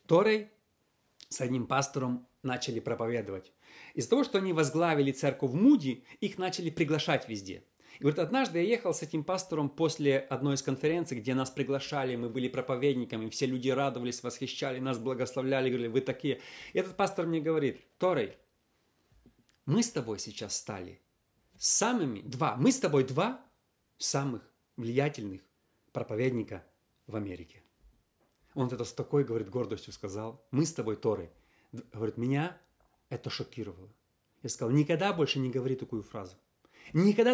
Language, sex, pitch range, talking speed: Russian, male, 125-180 Hz, 145 wpm